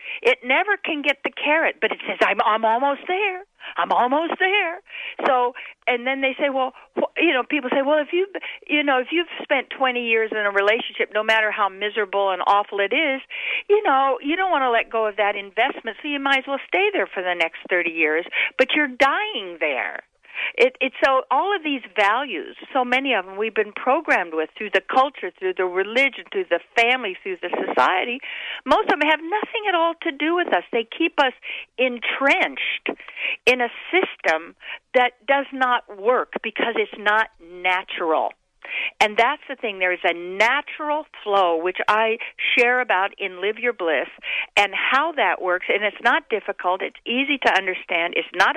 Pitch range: 210-310 Hz